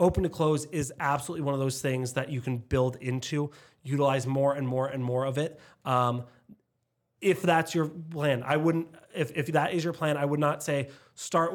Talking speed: 210 wpm